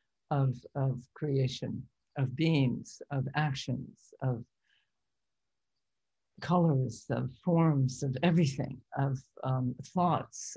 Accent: American